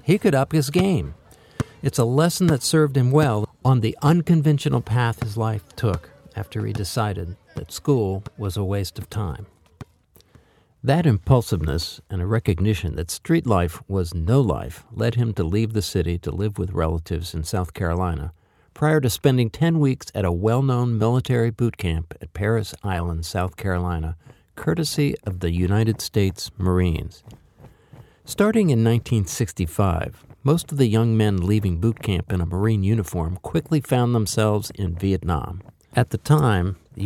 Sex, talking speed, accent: male, 160 wpm, American